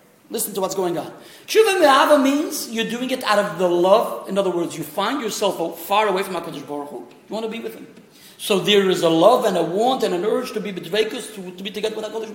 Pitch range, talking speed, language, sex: 205-300 Hz, 250 wpm, English, male